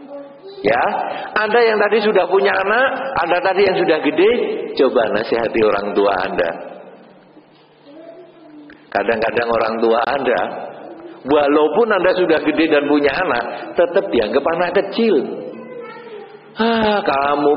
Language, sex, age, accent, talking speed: English, male, 50-69, Indonesian, 115 wpm